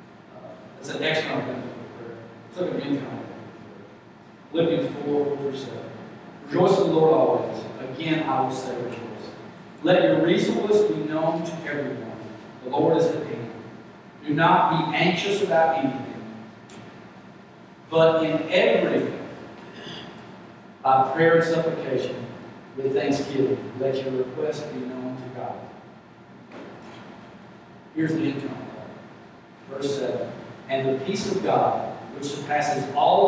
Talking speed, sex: 130 wpm, male